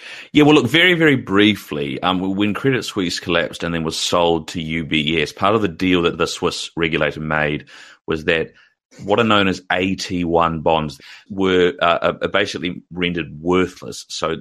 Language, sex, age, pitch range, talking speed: English, male, 30-49, 75-95 Hz, 170 wpm